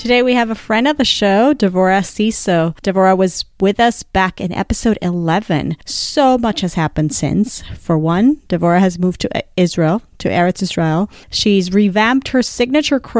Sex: female